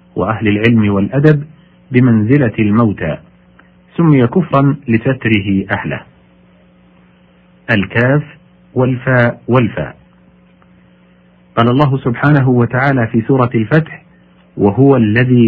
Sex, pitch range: male, 100-135 Hz